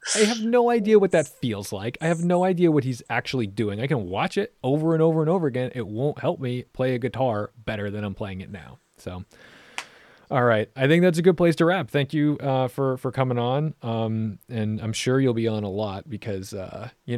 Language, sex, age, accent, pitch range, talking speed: English, male, 30-49, American, 105-135 Hz, 240 wpm